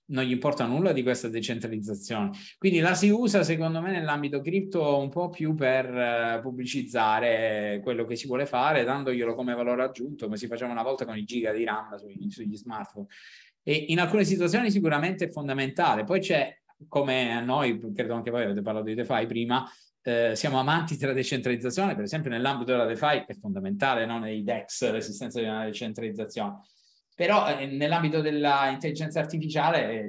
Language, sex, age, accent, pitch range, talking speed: Italian, male, 20-39, native, 115-145 Hz, 175 wpm